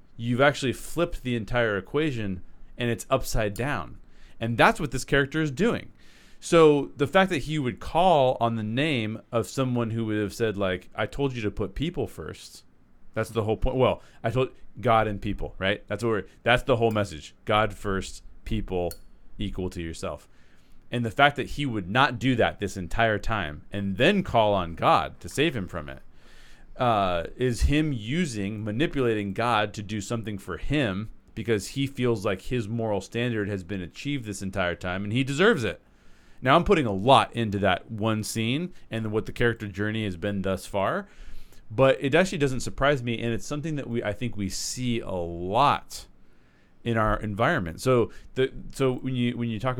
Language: English